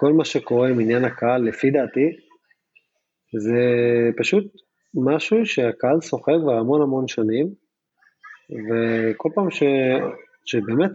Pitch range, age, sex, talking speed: 120-175 Hz, 20-39, male, 115 wpm